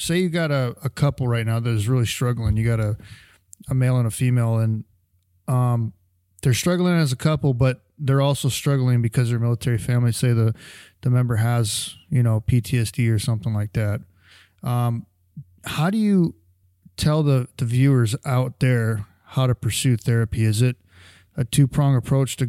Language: English